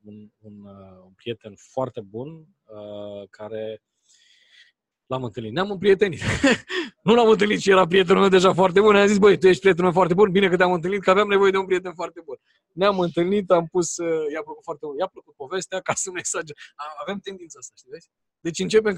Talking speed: 210 wpm